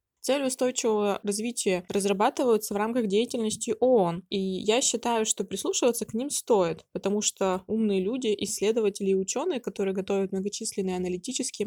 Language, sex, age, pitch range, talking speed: Russian, female, 20-39, 195-225 Hz, 140 wpm